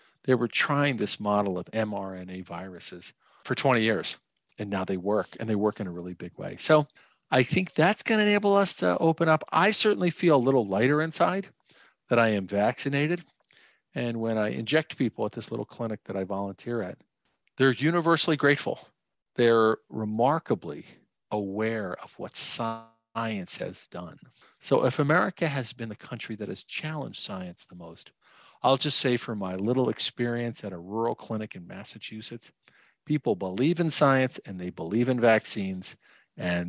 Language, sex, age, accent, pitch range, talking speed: English, male, 50-69, American, 105-145 Hz, 170 wpm